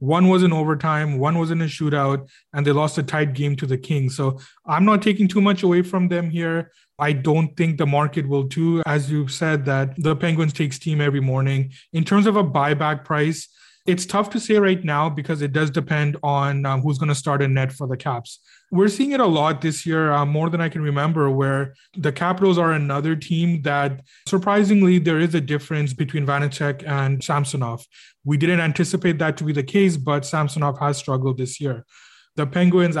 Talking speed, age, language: 210 wpm, 30-49, English